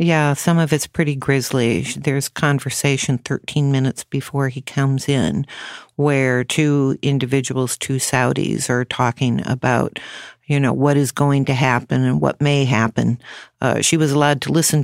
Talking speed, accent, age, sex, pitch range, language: 160 wpm, American, 50-69, female, 130-145 Hz, English